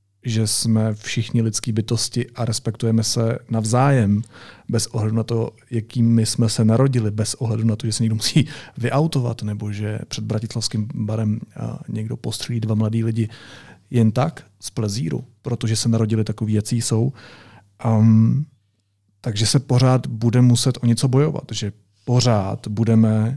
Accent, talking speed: native, 150 wpm